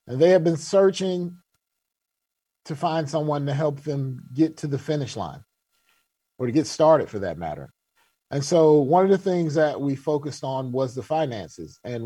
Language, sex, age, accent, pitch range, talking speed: English, male, 40-59, American, 145-175 Hz, 185 wpm